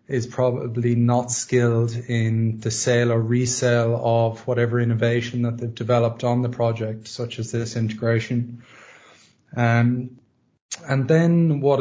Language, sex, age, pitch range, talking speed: English, male, 20-39, 120-130 Hz, 130 wpm